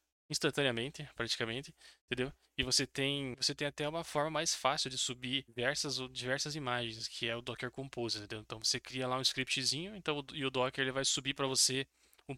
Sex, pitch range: male, 115-140 Hz